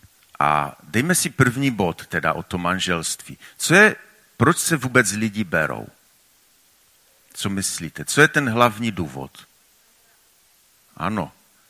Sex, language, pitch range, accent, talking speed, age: male, Czech, 100-120 Hz, native, 125 wpm, 50-69